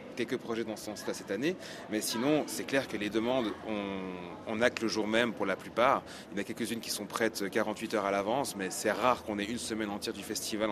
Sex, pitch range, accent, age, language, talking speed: male, 100-115 Hz, French, 30-49, French, 250 wpm